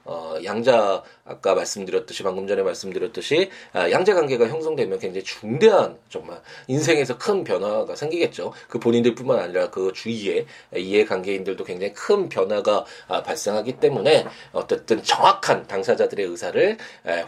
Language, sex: Korean, male